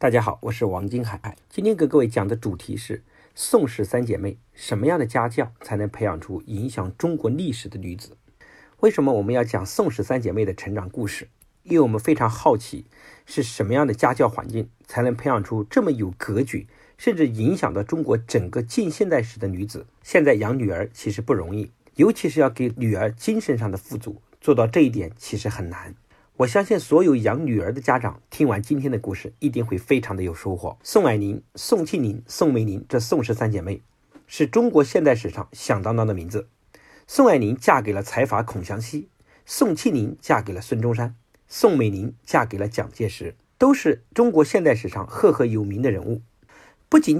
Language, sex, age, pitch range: Chinese, male, 50-69, 105-140 Hz